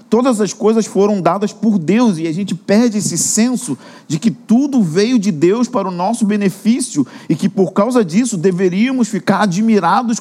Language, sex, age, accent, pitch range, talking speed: Portuguese, male, 50-69, Brazilian, 185-230 Hz, 180 wpm